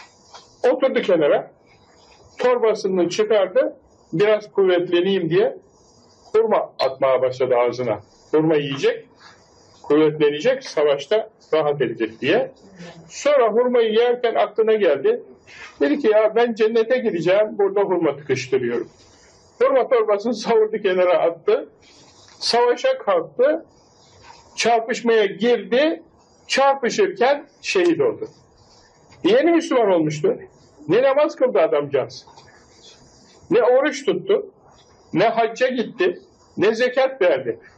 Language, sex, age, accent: Turkish, male, 60-79, native